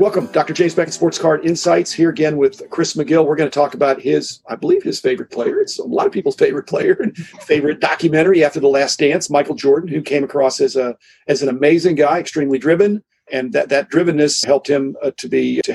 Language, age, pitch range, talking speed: English, 50-69, 140-190 Hz, 230 wpm